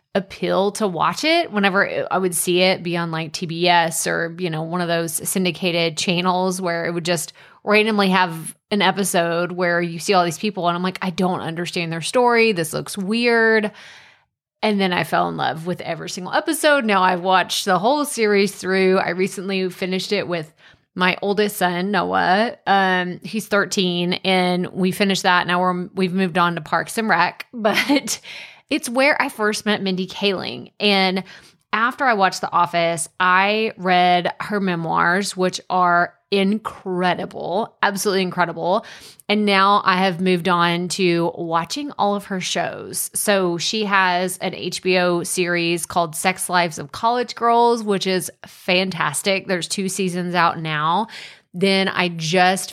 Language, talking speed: English, 165 wpm